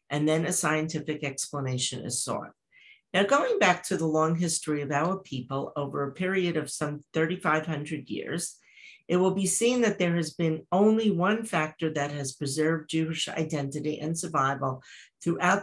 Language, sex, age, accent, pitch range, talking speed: English, female, 50-69, American, 140-175 Hz, 165 wpm